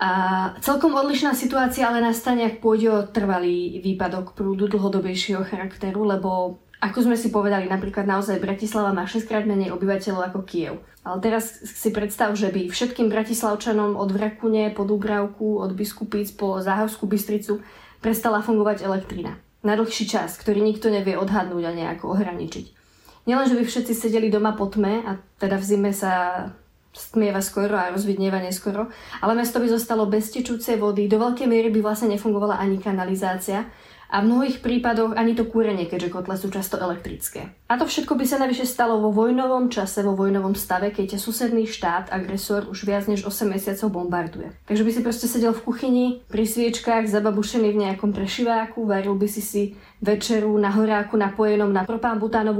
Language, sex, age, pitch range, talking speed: Slovak, female, 20-39, 195-225 Hz, 170 wpm